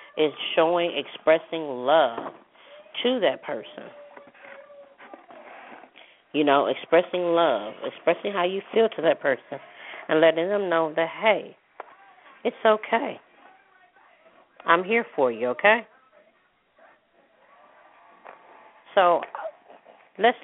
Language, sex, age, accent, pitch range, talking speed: English, female, 40-59, American, 135-175 Hz, 95 wpm